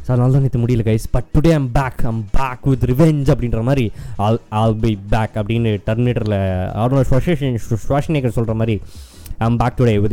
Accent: native